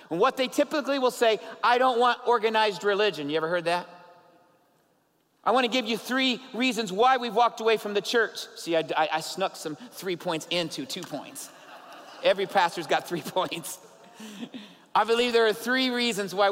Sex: male